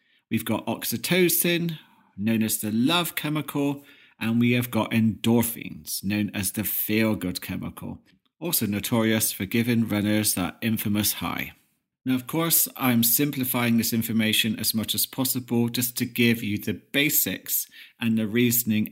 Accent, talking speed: British, 145 wpm